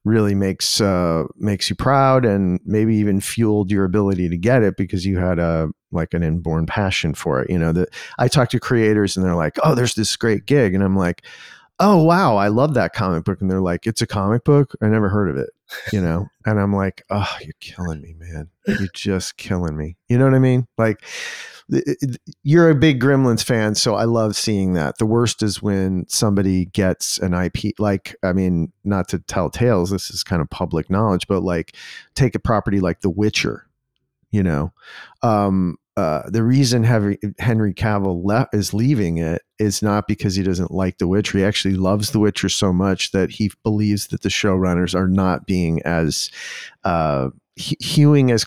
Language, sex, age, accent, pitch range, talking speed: English, male, 40-59, American, 90-115 Hz, 200 wpm